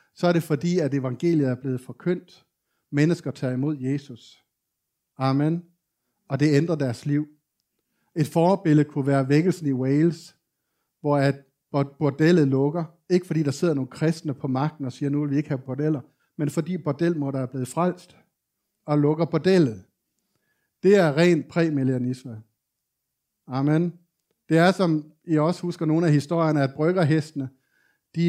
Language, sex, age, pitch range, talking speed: Danish, male, 60-79, 135-165 Hz, 155 wpm